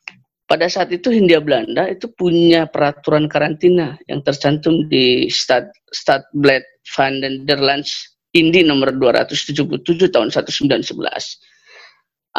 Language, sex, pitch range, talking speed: Indonesian, female, 145-180 Hz, 105 wpm